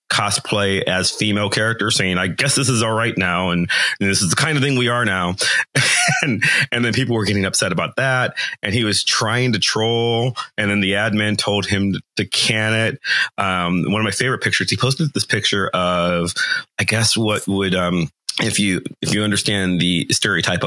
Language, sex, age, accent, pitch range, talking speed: English, male, 30-49, American, 105-140 Hz, 205 wpm